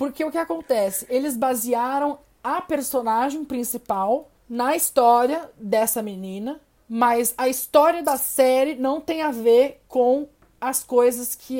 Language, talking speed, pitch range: Portuguese, 135 wpm, 220-270 Hz